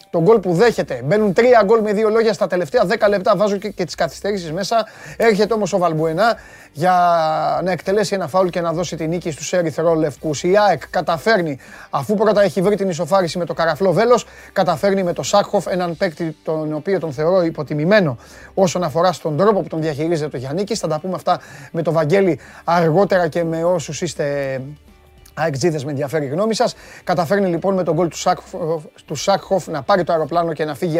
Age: 30-49